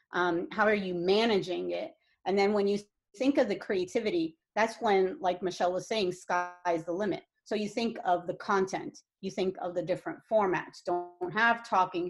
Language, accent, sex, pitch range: English, American, female, 180-230 Hz